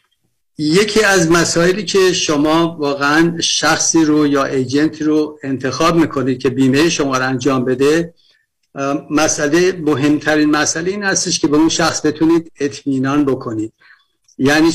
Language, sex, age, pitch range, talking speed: Persian, male, 50-69, 135-155 Hz, 130 wpm